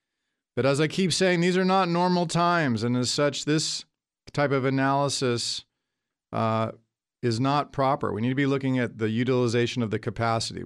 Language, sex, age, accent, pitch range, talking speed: English, male, 40-59, American, 115-135 Hz, 180 wpm